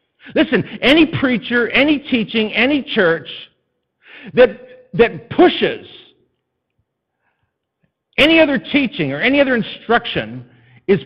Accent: American